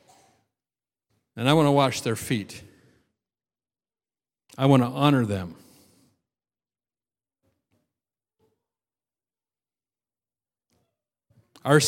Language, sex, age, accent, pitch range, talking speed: English, male, 50-69, American, 135-180 Hz, 65 wpm